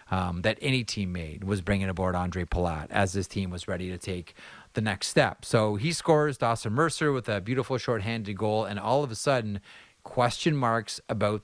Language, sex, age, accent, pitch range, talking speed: English, male, 30-49, American, 100-125 Hz, 200 wpm